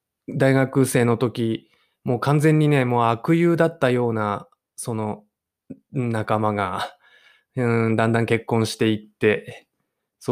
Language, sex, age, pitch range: Japanese, male, 20-39, 105-125 Hz